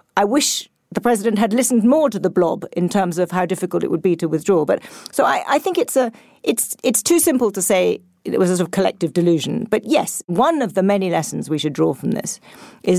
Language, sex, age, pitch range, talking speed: English, female, 40-59, 180-230 Hz, 245 wpm